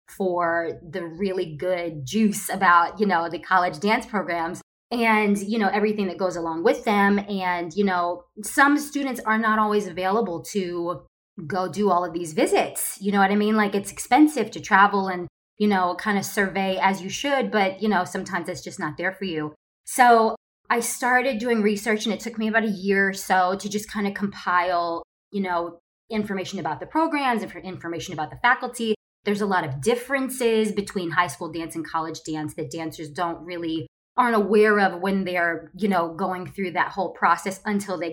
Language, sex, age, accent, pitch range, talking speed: English, female, 20-39, American, 175-215 Hz, 200 wpm